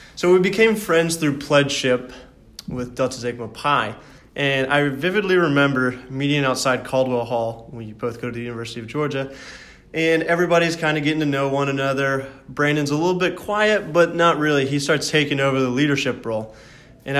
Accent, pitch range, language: American, 125-150 Hz, English